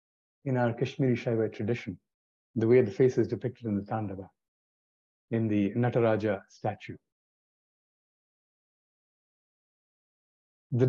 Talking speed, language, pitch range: 105 wpm, English, 105-125 Hz